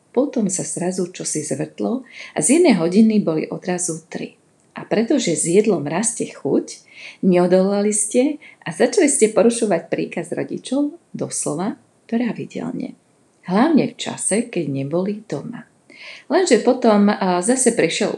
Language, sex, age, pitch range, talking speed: Slovak, female, 40-59, 170-235 Hz, 130 wpm